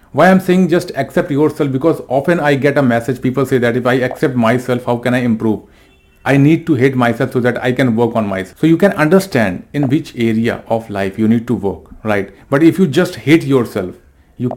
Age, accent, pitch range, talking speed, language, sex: 40-59, native, 110-140 Hz, 230 wpm, Hindi, male